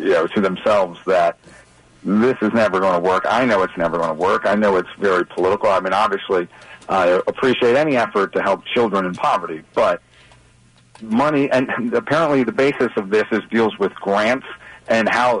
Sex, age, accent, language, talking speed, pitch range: male, 40-59, American, English, 190 wpm, 105-130 Hz